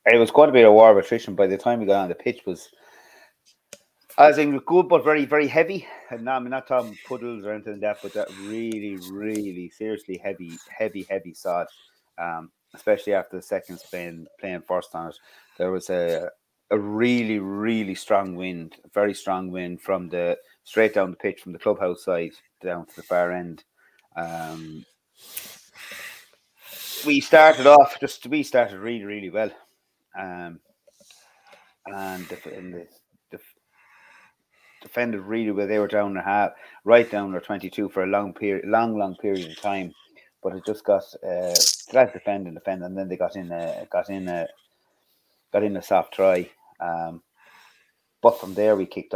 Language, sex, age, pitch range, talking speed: English, male, 30-49, 90-115 Hz, 185 wpm